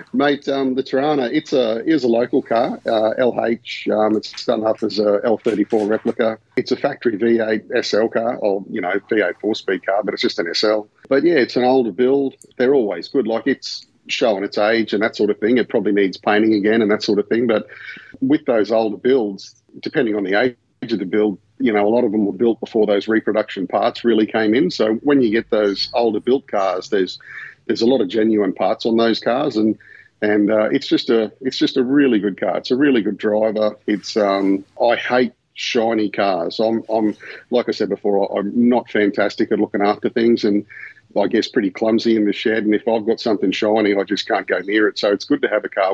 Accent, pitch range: Australian, 105-115 Hz